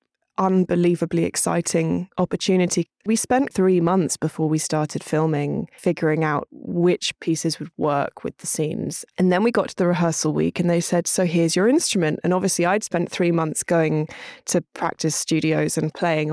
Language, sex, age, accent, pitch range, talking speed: English, female, 20-39, British, 155-180 Hz, 175 wpm